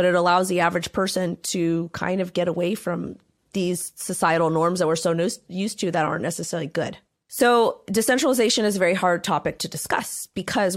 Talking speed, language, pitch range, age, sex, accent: 195 wpm, English, 170-195 Hz, 30-49, female, American